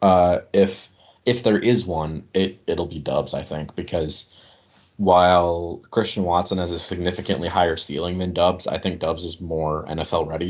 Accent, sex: American, male